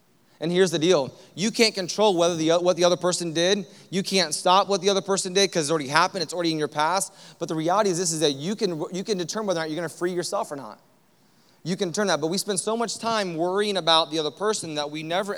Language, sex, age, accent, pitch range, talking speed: English, male, 30-49, American, 170-215 Hz, 275 wpm